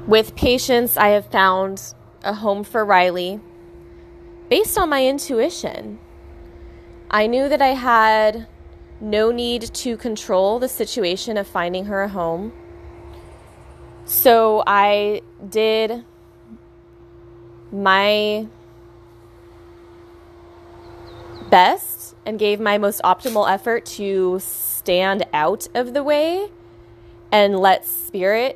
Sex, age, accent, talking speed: female, 20-39, American, 105 wpm